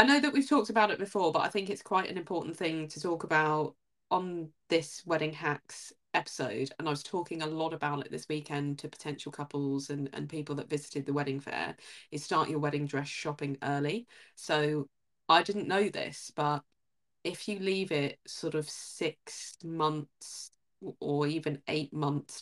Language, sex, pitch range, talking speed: English, female, 145-160 Hz, 185 wpm